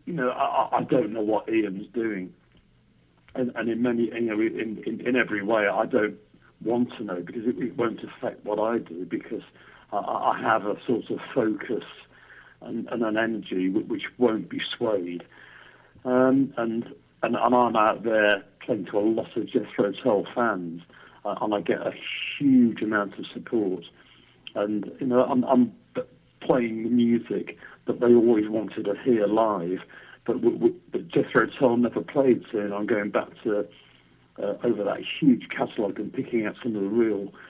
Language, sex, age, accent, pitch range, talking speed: English, male, 50-69, British, 100-125 Hz, 180 wpm